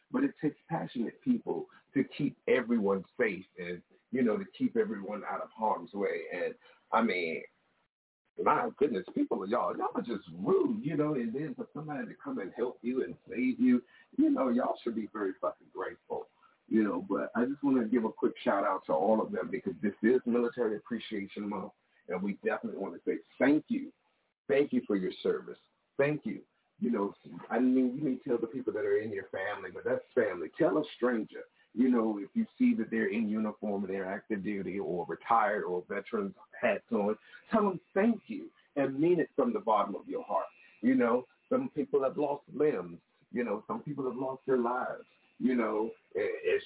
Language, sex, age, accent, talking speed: English, male, 50-69, American, 205 wpm